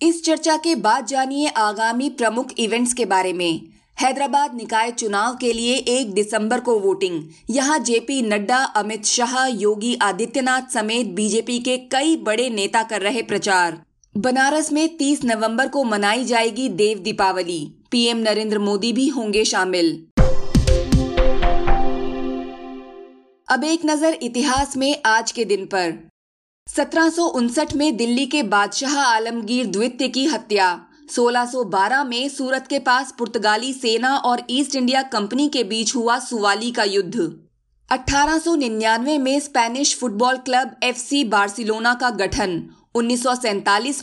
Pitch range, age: 210-270 Hz, 20-39